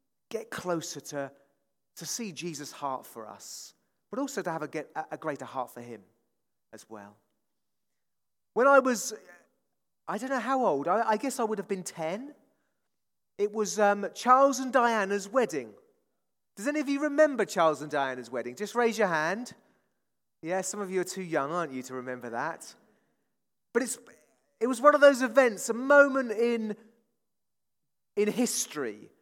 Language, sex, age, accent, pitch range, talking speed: English, male, 30-49, British, 155-235 Hz, 175 wpm